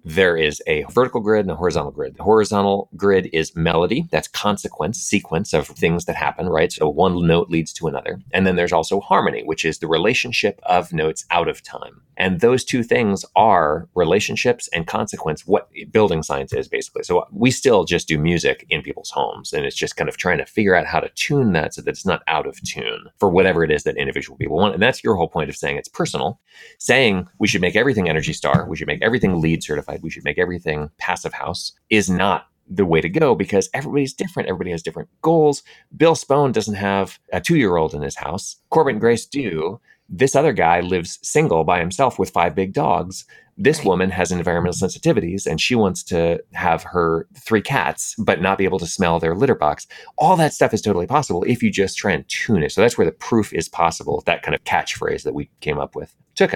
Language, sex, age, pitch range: English, male, 30-49, 85-130 Hz